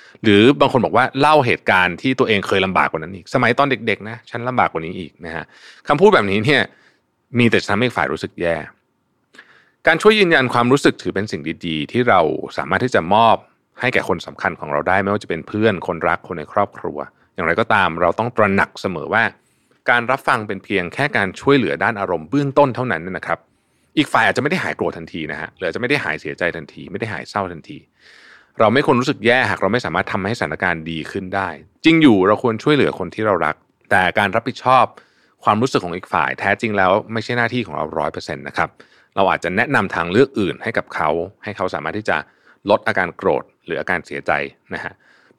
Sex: male